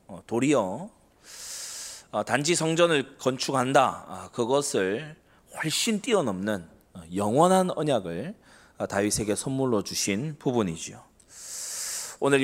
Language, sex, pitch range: Korean, male, 105-150 Hz